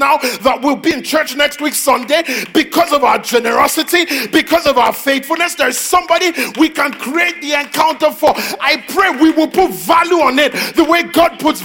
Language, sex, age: English, male, 40-59